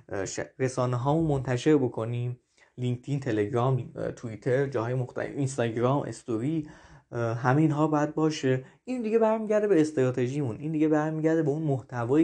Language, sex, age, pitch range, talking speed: Persian, male, 20-39, 125-155 Hz, 130 wpm